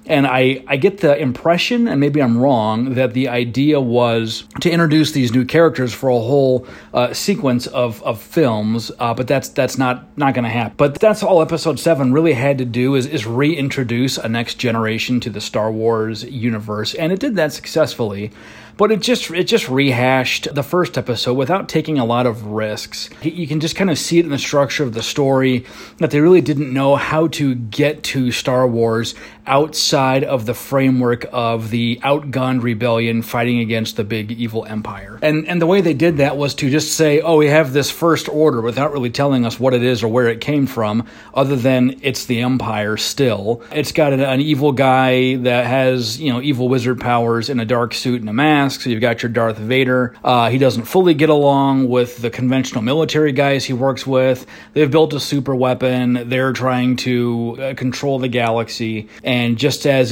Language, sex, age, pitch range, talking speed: English, male, 30-49, 120-145 Hz, 205 wpm